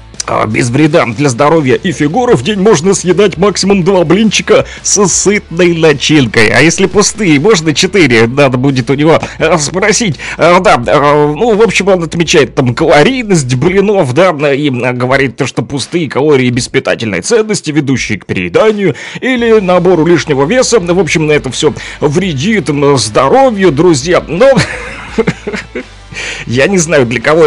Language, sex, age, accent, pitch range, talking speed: Russian, male, 30-49, native, 140-190 Hz, 145 wpm